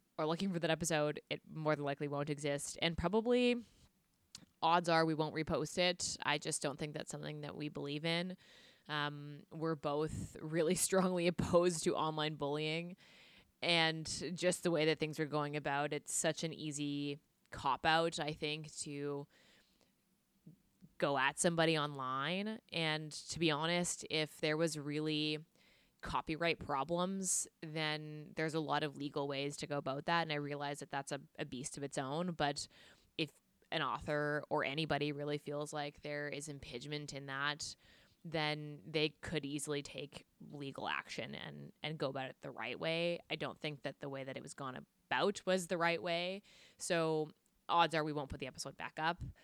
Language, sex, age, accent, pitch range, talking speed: English, female, 20-39, American, 145-165 Hz, 175 wpm